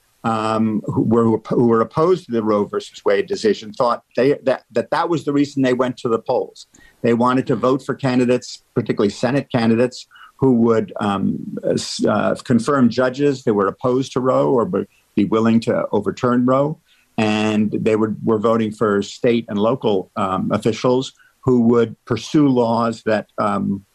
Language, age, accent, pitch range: English, 50-69, American, 110-130 Hz